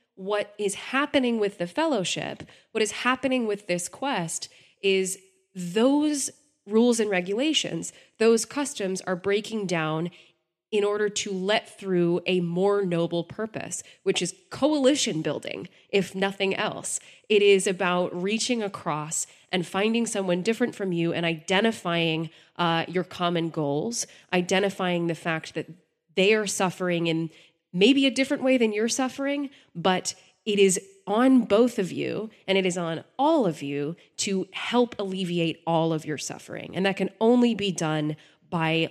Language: English